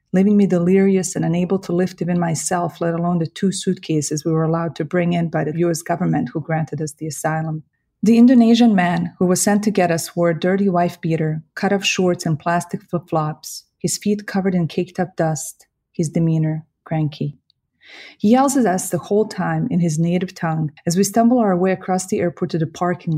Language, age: English, 30-49